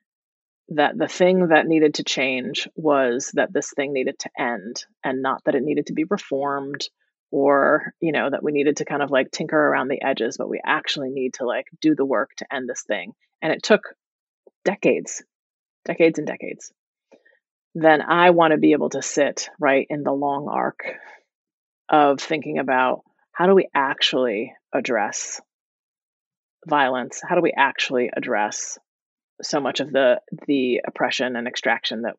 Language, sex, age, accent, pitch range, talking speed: English, female, 30-49, American, 145-175 Hz, 170 wpm